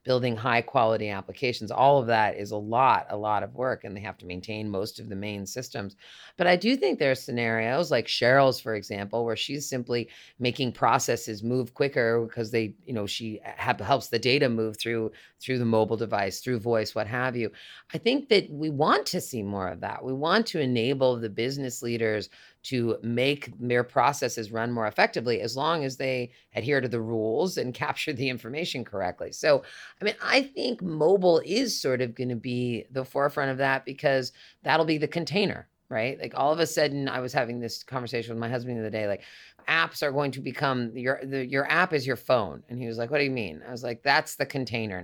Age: 30-49